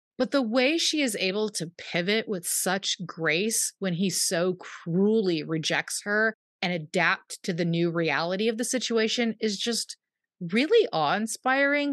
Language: English